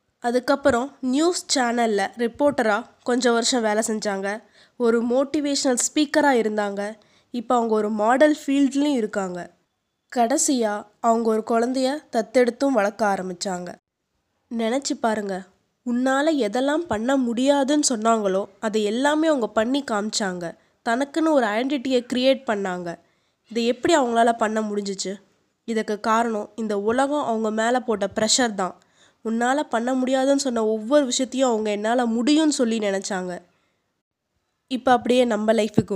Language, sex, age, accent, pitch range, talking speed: Tamil, female, 20-39, native, 210-270 Hz, 115 wpm